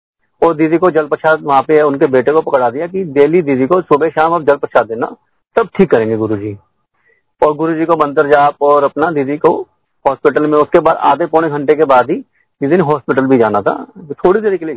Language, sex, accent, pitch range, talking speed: Hindi, male, native, 130-165 Hz, 230 wpm